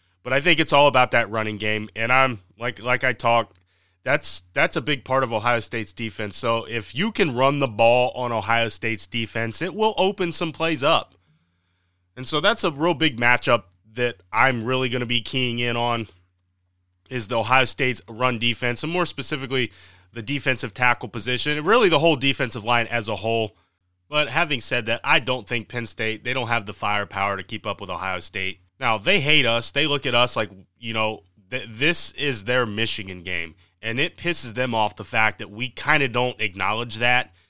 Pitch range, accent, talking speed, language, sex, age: 110-135 Hz, American, 205 wpm, English, male, 30-49